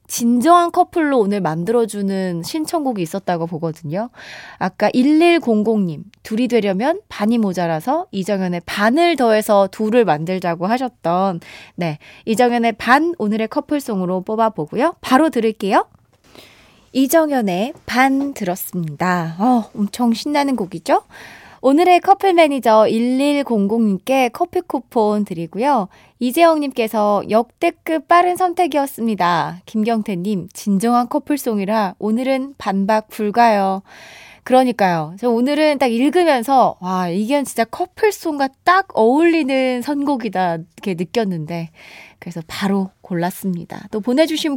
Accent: native